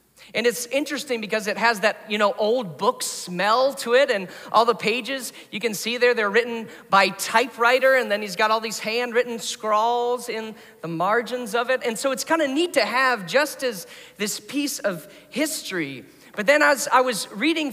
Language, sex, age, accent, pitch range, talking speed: English, male, 40-59, American, 215-270 Hz, 200 wpm